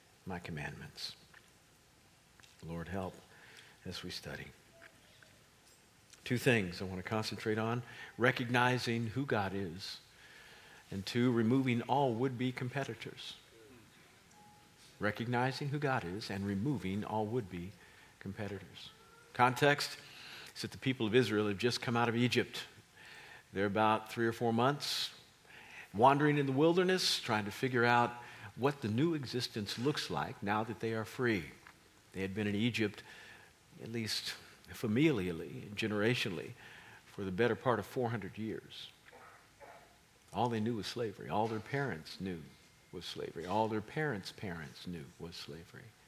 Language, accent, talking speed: English, American, 135 wpm